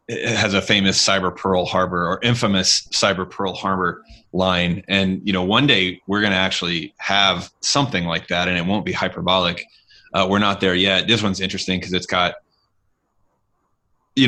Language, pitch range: English, 95-105 Hz